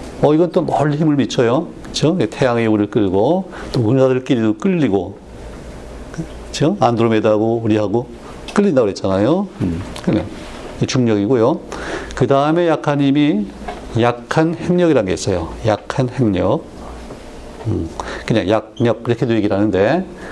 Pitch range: 100-145 Hz